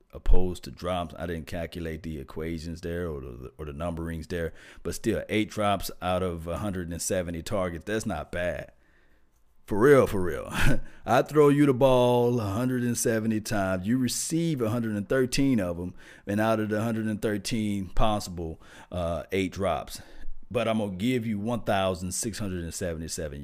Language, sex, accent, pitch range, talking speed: English, male, American, 85-120 Hz, 145 wpm